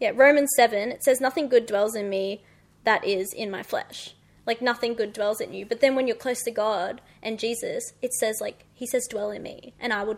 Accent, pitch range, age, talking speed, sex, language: Australian, 220-270 Hz, 20-39, 240 wpm, female, English